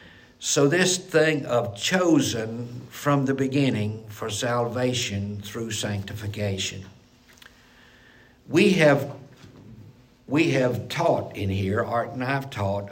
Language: English